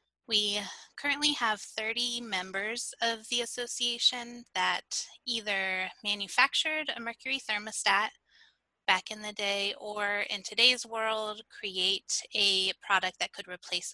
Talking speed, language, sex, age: 120 wpm, English, female, 10-29